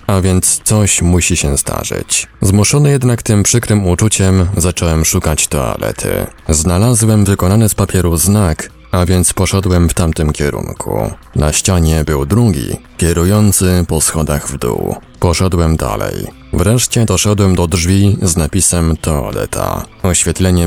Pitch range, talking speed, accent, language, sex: 80-105 Hz, 130 wpm, native, Polish, male